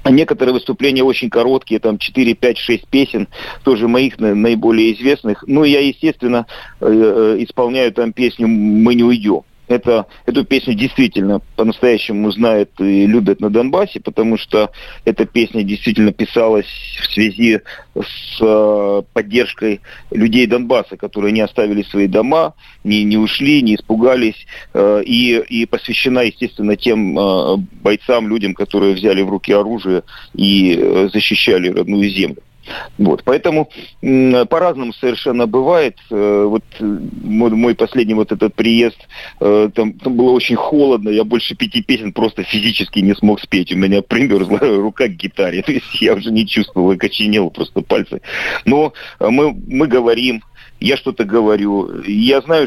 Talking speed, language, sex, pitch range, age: 135 wpm, Russian, male, 105-125 Hz, 40-59